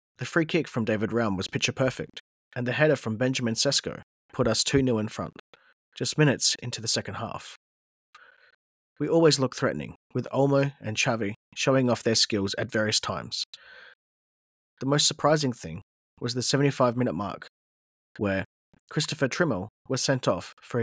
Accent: Australian